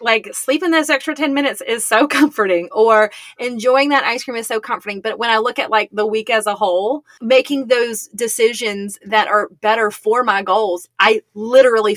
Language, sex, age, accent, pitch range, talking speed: English, female, 20-39, American, 200-260 Hz, 195 wpm